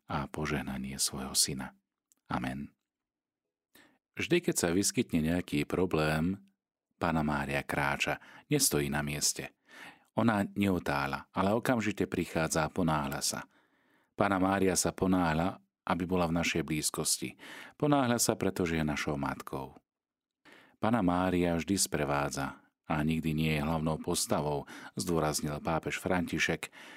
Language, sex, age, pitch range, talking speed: Slovak, male, 40-59, 75-100 Hz, 120 wpm